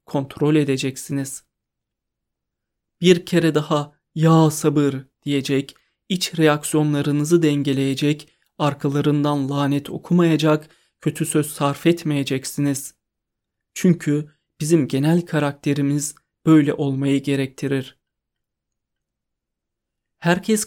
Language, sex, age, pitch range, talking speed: Turkish, male, 30-49, 145-165 Hz, 75 wpm